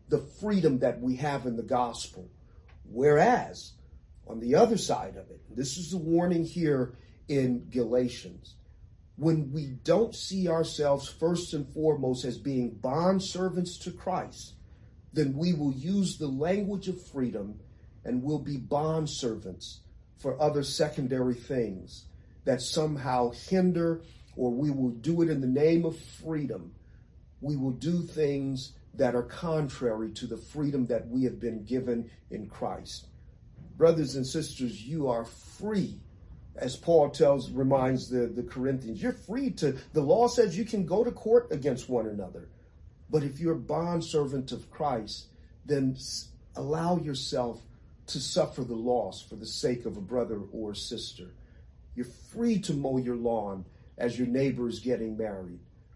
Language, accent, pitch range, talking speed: English, American, 120-160 Hz, 155 wpm